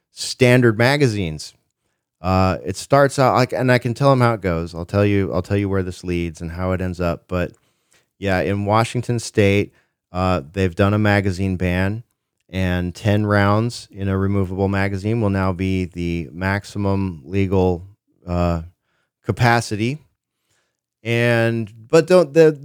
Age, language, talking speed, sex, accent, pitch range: 30-49, English, 155 wpm, male, American, 95-120 Hz